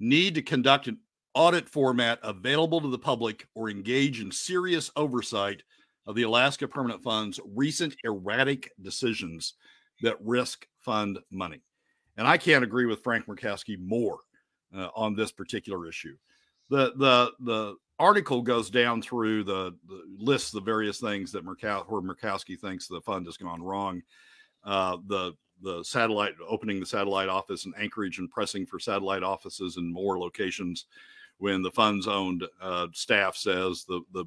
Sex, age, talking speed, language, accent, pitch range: male, 50-69, 160 wpm, English, American, 95-120 Hz